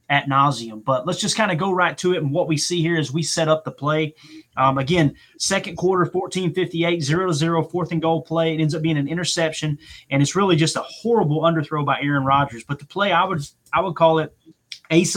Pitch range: 140-170 Hz